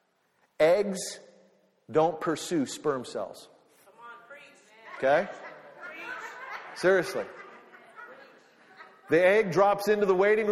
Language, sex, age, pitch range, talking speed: English, male, 40-59, 160-205 Hz, 75 wpm